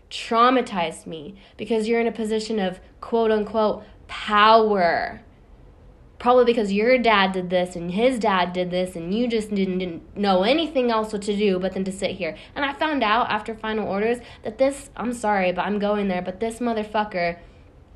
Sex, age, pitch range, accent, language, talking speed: female, 10-29, 190-245 Hz, American, English, 185 wpm